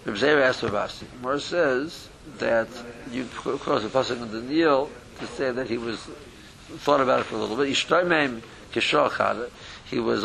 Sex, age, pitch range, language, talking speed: male, 60-79, 110-145 Hz, English, 145 wpm